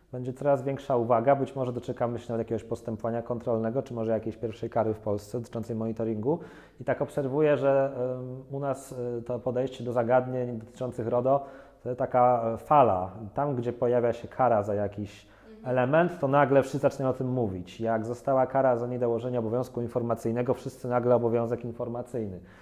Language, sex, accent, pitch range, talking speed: Polish, male, native, 115-130 Hz, 165 wpm